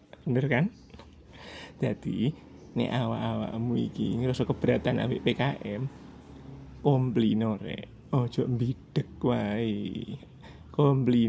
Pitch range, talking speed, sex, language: 115-160 Hz, 95 wpm, male, Indonesian